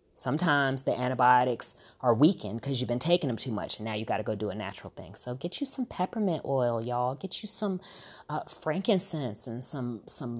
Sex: female